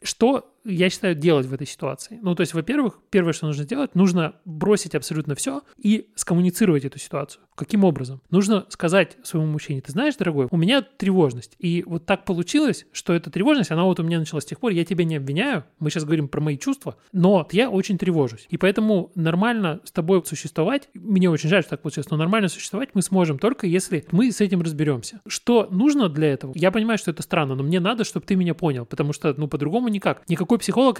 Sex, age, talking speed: male, 30-49, 215 wpm